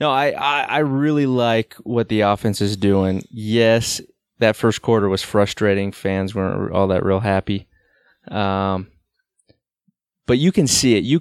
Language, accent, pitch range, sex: English, American, 95-115 Hz, male